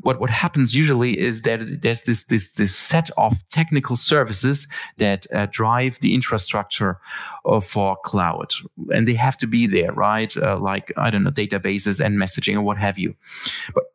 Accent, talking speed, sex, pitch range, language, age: German, 175 wpm, male, 105-135 Hz, English, 30-49